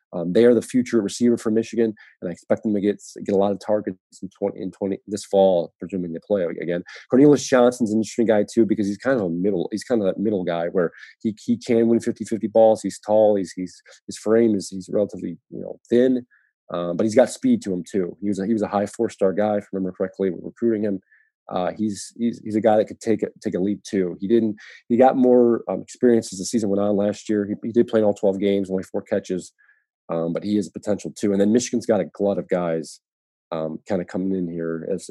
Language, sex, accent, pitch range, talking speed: English, male, American, 95-110 Hz, 260 wpm